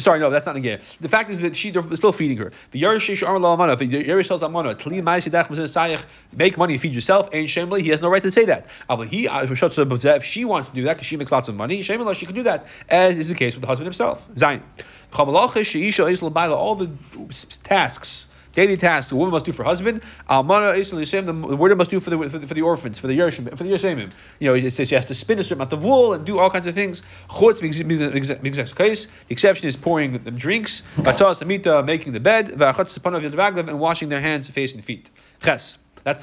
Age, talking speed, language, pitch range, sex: 30-49, 200 wpm, English, 140-185 Hz, male